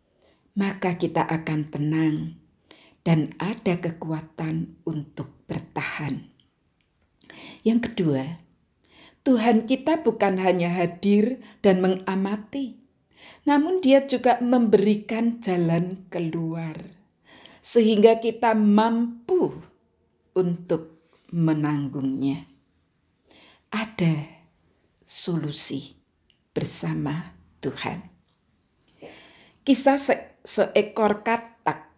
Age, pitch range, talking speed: 50-69, 165-235 Hz, 70 wpm